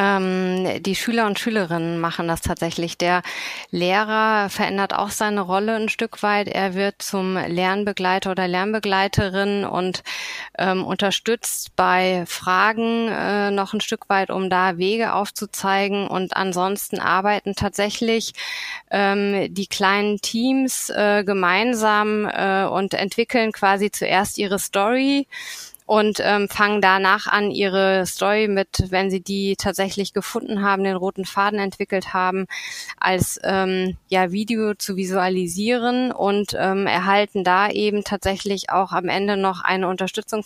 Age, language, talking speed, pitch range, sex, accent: 20-39, German, 130 wpm, 190-215 Hz, female, German